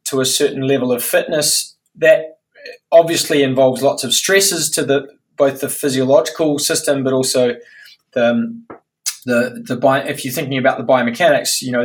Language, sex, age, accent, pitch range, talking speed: English, male, 20-39, Australian, 130-150 Hz, 165 wpm